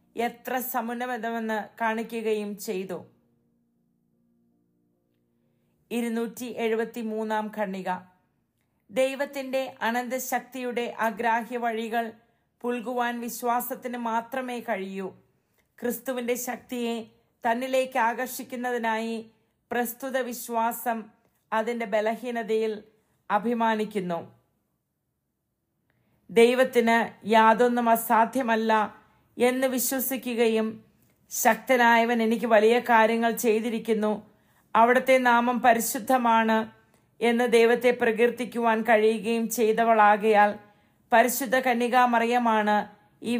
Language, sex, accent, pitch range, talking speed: English, female, Indian, 215-240 Hz, 75 wpm